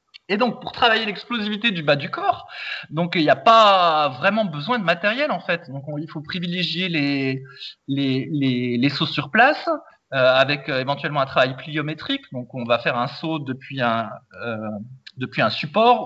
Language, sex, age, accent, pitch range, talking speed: French, male, 20-39, French, 145-210 Hz, 190 wpm